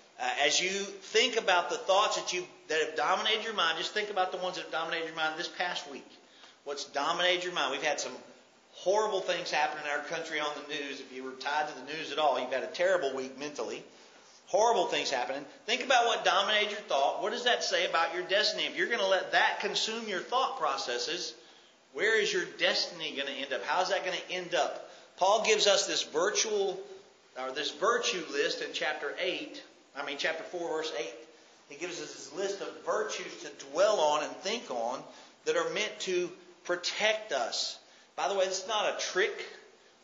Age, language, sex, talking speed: 40-59, English, male, 215 wpm